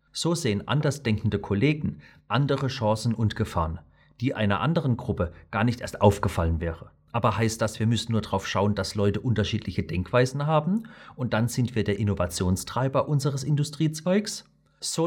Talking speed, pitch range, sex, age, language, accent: 155 wpm, 100-135 Hz, male, 40-59, German, German